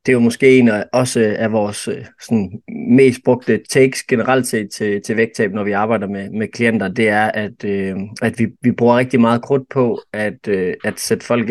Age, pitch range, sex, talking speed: 20-39, 110-125 Hz, male, 215 wpm